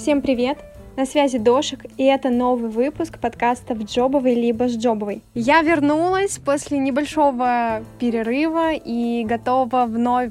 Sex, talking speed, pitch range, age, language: female, 135 wpm, 220-260 Hz, 20-39, Russian